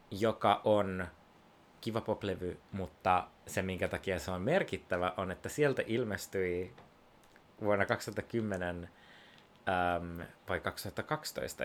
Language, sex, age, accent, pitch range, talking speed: Finnish, male, 30-49, native, 95-135 Hz, 105 wpm